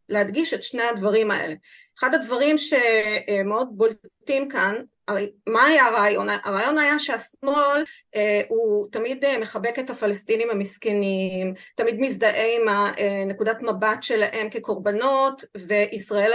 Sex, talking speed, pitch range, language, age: female, 110 wpm, 215-320 Hz, Hebrew, 30-49